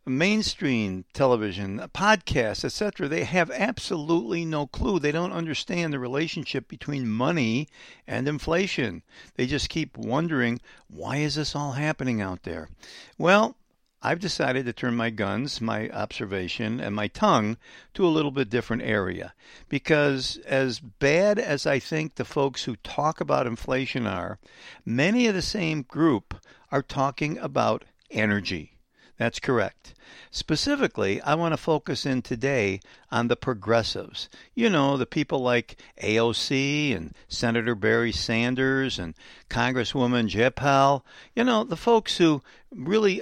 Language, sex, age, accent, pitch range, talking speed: English, male, 60-79, American, 115-155 Hz, 140 wpm